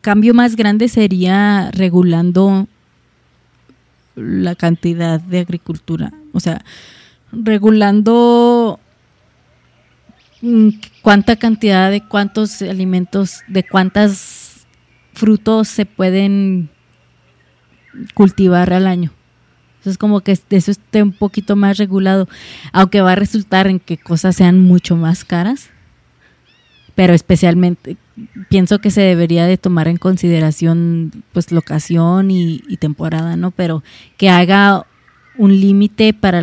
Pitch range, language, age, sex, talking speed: 175-210 Hz, Spanish, 20-39, female, 110 wpm